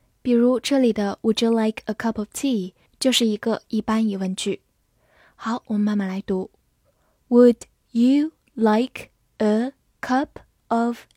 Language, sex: Chinese, female